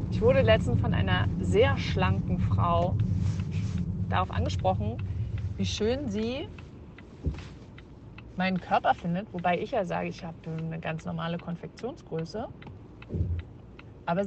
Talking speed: 115 wpm